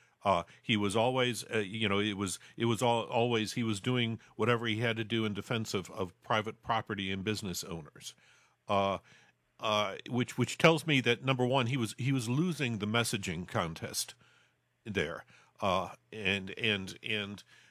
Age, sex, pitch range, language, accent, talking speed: 50-69, male, 110-135 Hz, English, American, 175 wpm